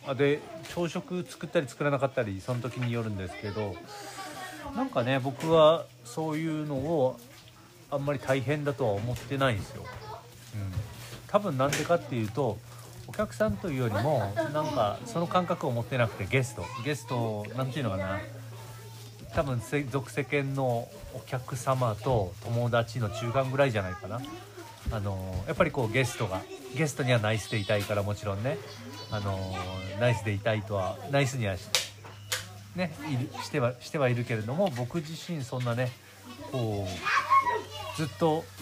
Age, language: 40-59, Japanese